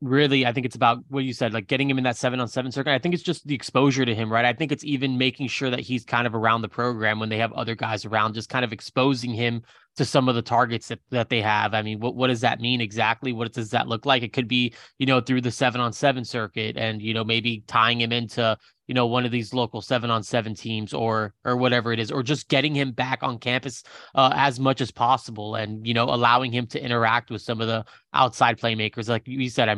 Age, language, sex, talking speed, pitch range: 20-39, English, male, 270 wpm, 115-135 Hz